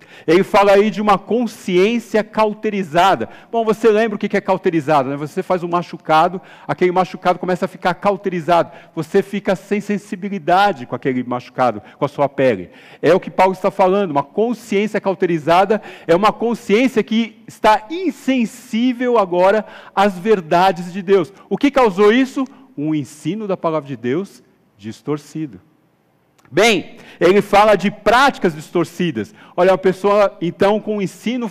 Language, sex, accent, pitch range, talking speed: Portuguese, male, Brazilian, 170-210 Hz, 150 wpm